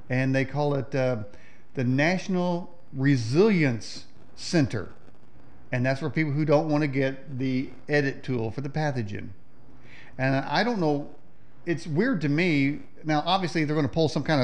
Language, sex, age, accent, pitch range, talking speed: English, male, 40-59, American, 130-170 Hz, 165 wpm